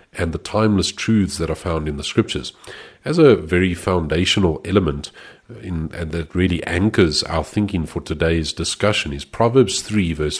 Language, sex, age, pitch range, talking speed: English, male, 40-59, 80-105 Hz, 165 wpm